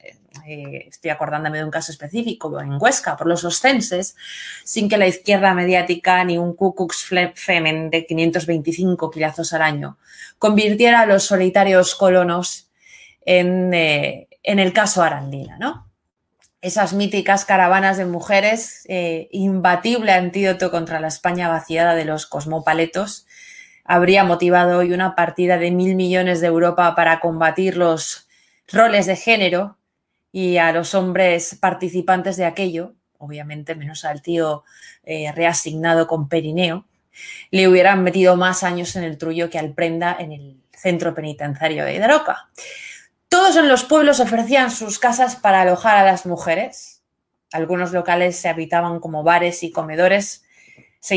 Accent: Spanish